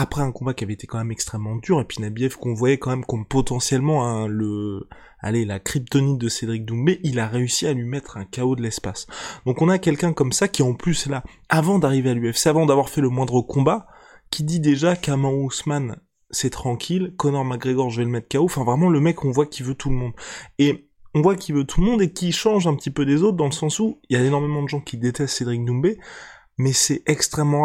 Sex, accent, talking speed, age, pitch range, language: male, French, 250 wpm, 20-39, 125-160 Hz, French